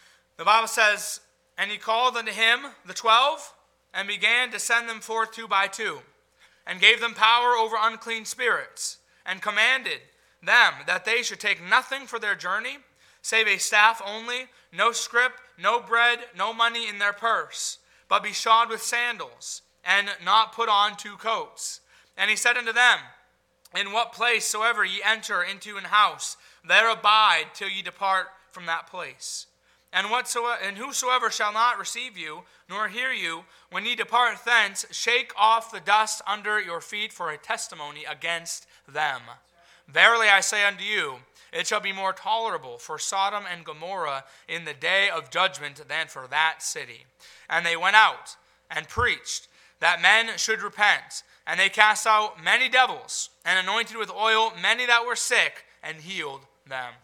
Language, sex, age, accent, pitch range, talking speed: English, male, 30-49, American, 185-230 Hz, 170 wpm